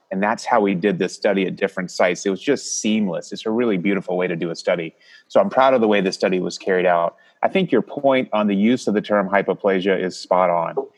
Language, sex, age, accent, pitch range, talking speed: English, male, 30-49, American, 90-105 Hz, 260 wpm